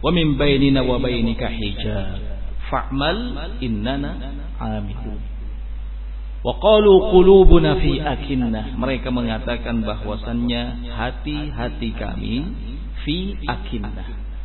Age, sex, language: 50-69, male, Indonesian